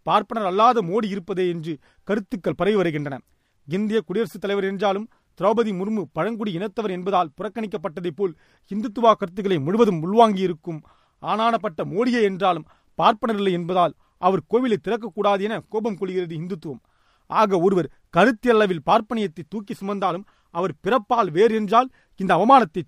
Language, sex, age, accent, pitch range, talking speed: Tamil, male, 40-59, native, 185-225 Hz, 125 wpm